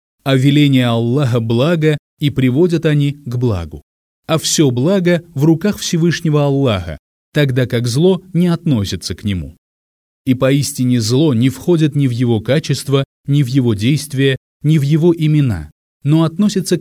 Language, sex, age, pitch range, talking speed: Russian, male, 30-49, 115-155 Hz, 150 wpm